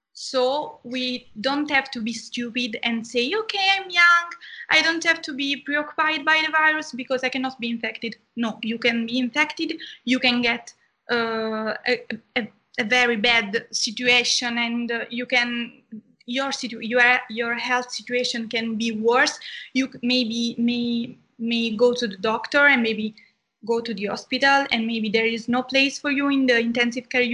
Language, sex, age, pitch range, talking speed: Hindi, female, 20-39, 230-260 Hz, 175 wpm